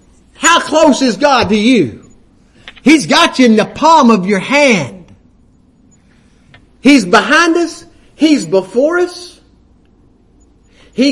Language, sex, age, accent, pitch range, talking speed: English, male, 50-69, American, 220-285 Hz, 120 wpm